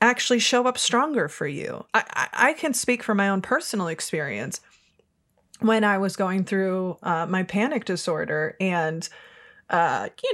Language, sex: English, female